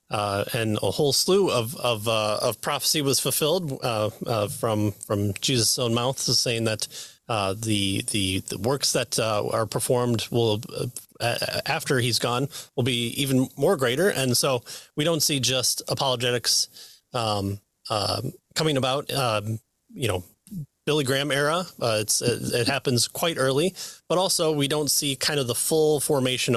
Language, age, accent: English, 30-49, American